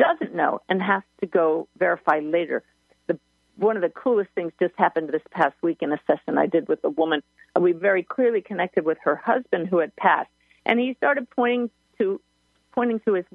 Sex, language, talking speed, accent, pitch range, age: female, English, 195 wpm, American, 170-240 Hz, 50-69